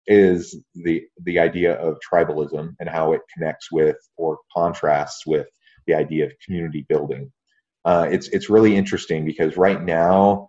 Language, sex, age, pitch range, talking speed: English, male, 30-49, 75-100 Hz, 155 wpm